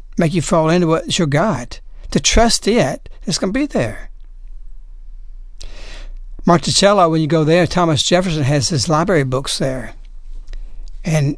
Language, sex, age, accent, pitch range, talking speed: English, male, 60-79, American, 150-200 Hz, 140 wpm